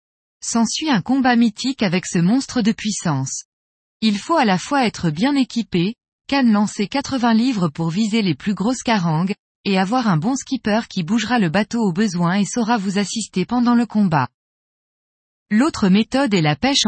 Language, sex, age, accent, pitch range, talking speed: French, female, 20-39, French, 185-245 Hz, 180 wpm